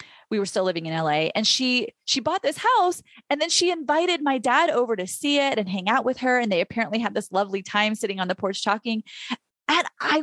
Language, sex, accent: English, female, American